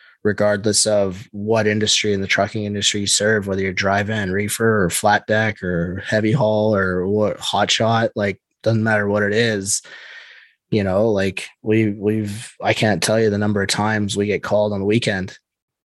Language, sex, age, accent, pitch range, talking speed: English, male, 20-39, American, 100-110 Hz, 180 wpm